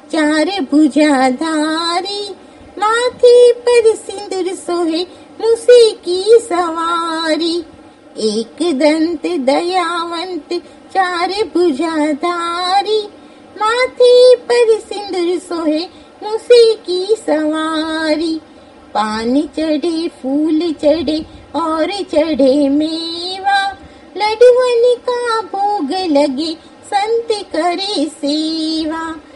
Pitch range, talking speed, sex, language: 305-420 Hz, 65 wpm, female, Gujarati